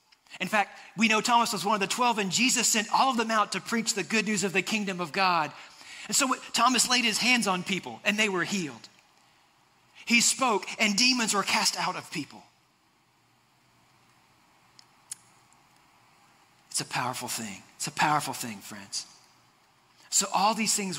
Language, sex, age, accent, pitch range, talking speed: English, male, 40-59, American, 170-220 Hz, 175 wpm